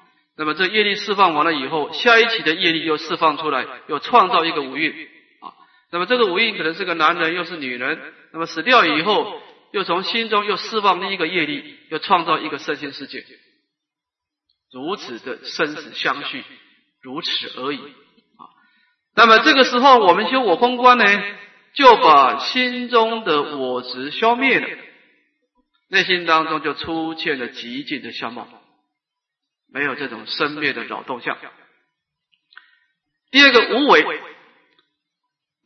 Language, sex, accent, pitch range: Chinese, male, native, 175-280 Hz